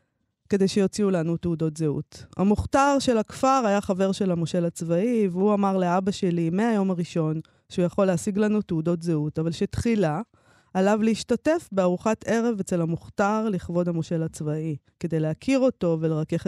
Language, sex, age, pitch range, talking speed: Hebrew, female, 20-39, 170-225 Hz, 145 wpm